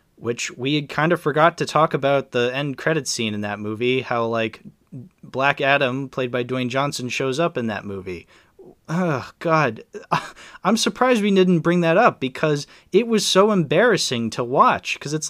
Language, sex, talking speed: English, male, 185 wpm